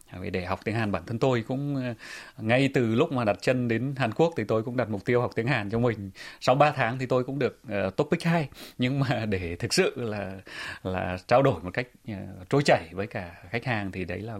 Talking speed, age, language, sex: 250 wpm, 20-39, Vietnamese, male